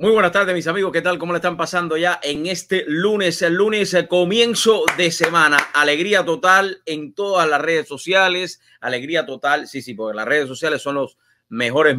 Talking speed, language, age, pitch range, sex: 195 wpm, English, 30-49, 120-170 Hz, male